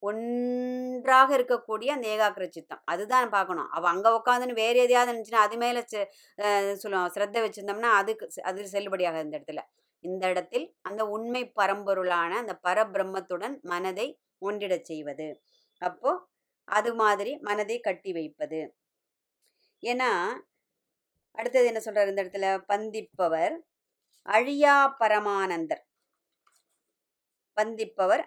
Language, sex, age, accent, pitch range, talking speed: Tamil, male, 30-49, native, 195-245 Hz, 100 wpm